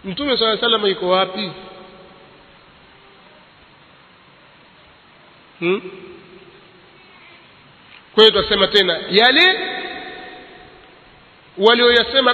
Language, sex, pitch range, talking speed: Swahili, male, 195-240 Hz, 60 wpm